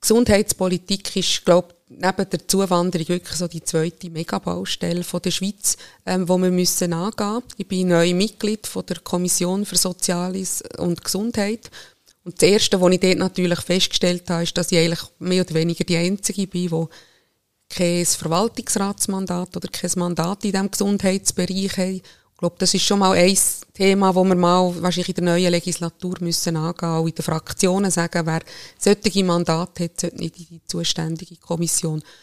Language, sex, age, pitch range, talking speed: German, female, 20-39, 175-205 Hz, 170 wpm